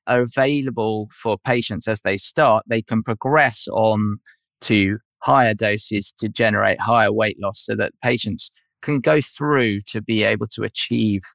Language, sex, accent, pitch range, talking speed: English, male, British, 105-125 Hz, 160 wpm